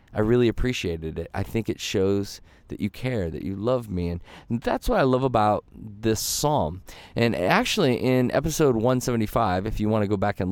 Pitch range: 105-150 Hz